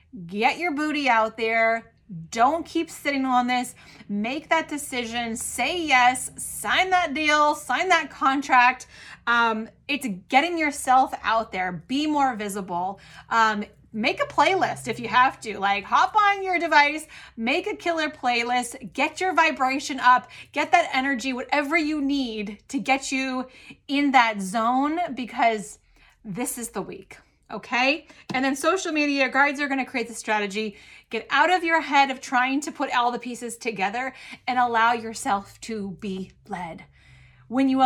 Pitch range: 225-290 Hz